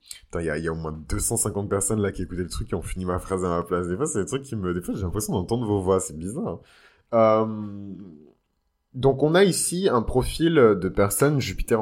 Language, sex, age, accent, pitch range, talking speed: French, male, 20-39, French, 95-115 Hz, 240 wpm